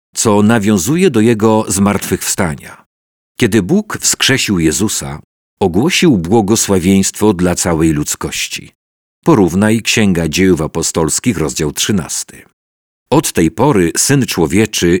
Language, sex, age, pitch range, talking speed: Polish, male, 50-69, 80-110 Hz, 100 wpm